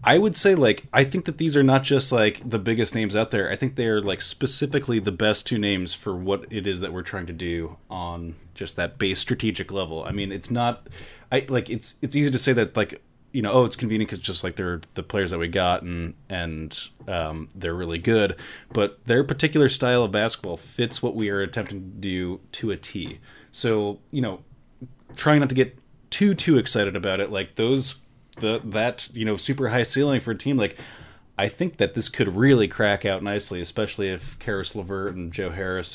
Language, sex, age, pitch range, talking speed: English, male, 20-39, 95-125 Hz, 220 wpm